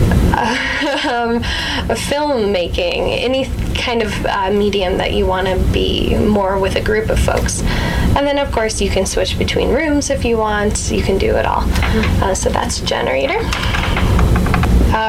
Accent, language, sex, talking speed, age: American, English, female, 165 wpm, 10-29